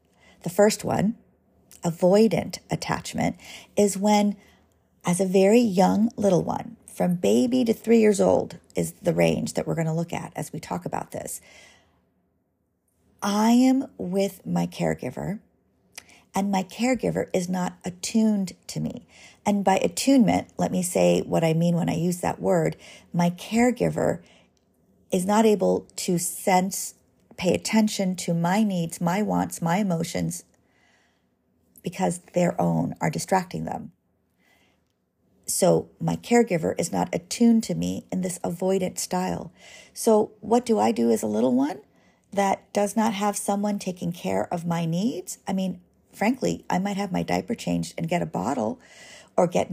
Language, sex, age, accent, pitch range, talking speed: English, female, 40-59, American, 150-210 Hz, 155 wpm